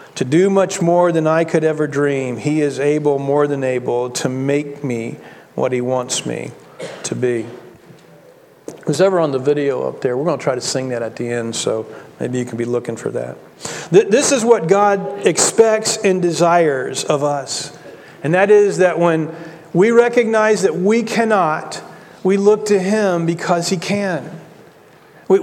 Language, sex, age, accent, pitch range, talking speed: English, male, 40-59, American, 145-195 Hz, 180 wpm